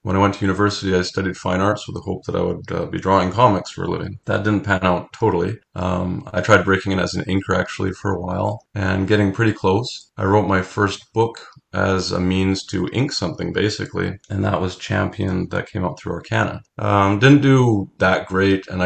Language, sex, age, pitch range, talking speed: English, male, 30-49, 90-105 Hz, 225 wpm